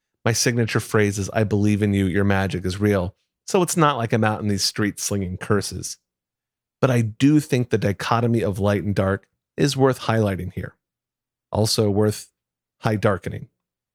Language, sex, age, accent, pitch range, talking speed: English, male, 30-49, American, 105-135 Hz, 175 wpm